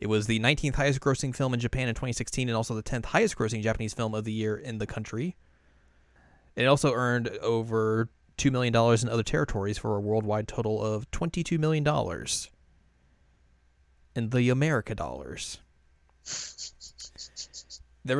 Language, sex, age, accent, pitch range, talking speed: English, male, 20-39, American, 105-125 Hz, 150 wpm